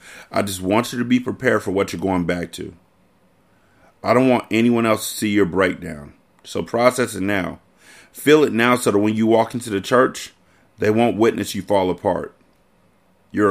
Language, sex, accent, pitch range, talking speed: English, male, American, 90-115 Hz, 195 wpm